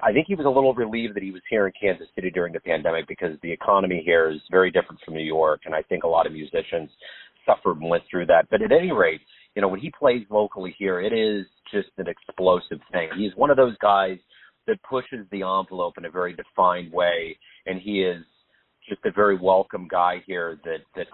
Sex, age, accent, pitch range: male, 40-59, American, 85-105 Hz